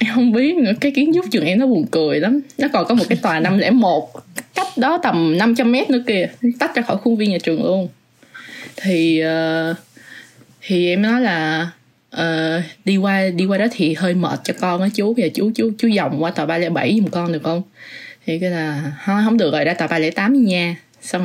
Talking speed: 225 wpm